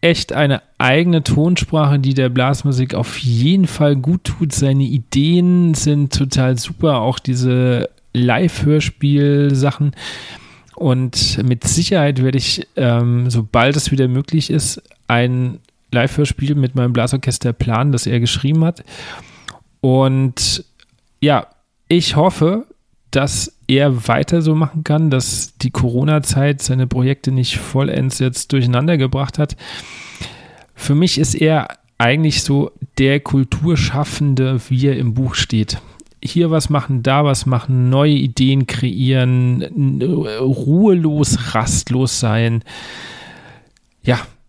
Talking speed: 120 wpm